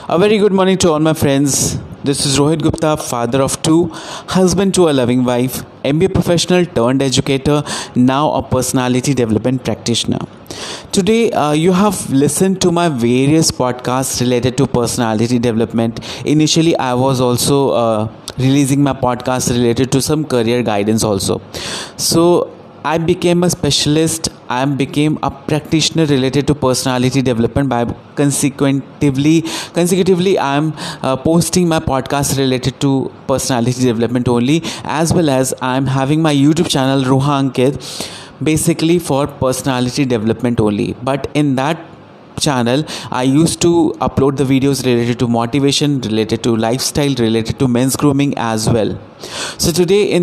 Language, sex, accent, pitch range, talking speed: Hindi, male, native, 125-160 Hz, 150 wpm